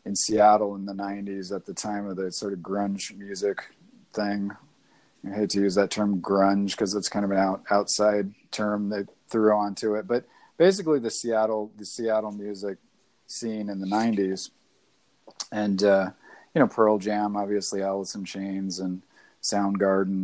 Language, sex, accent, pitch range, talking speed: English, male, American, 100-110 Hz, 170 wpm